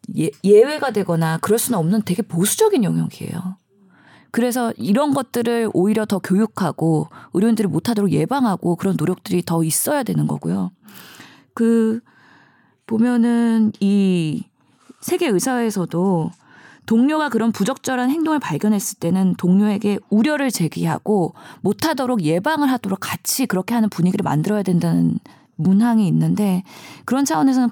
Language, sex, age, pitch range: Korean, female, 20-39, 185-245 Hz